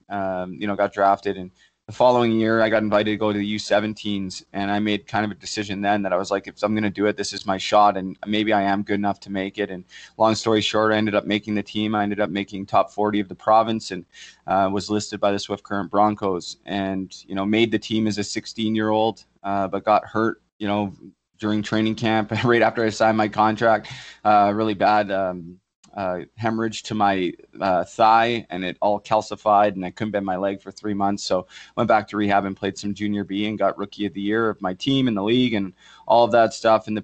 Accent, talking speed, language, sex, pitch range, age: American, 250 wpm, English, male, 100-110 Hz, 20-39